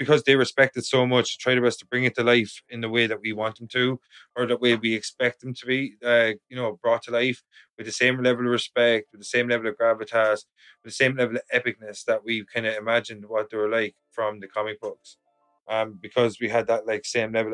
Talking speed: 260 wpm